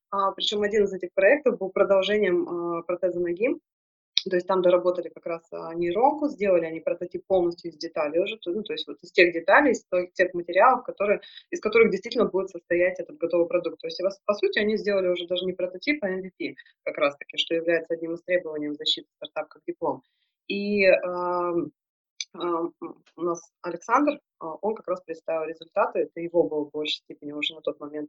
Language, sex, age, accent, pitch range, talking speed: Russian, female, 20-39, native, 165-195 Hz, 175 wpm